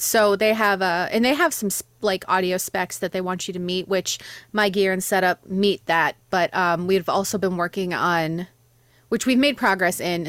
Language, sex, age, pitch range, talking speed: English, female, 20-39, 160-200 Hz, 215 wpm